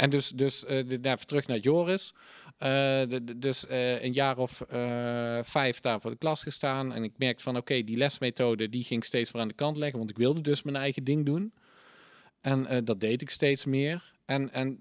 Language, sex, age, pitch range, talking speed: Dutch, male, 40-59, 115-140 Hz, 230 wpm